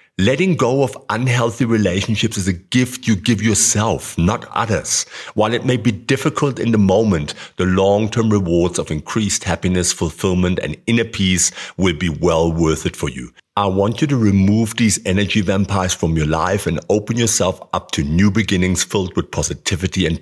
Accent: German